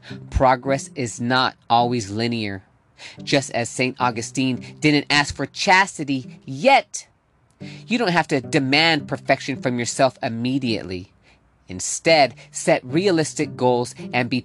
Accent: American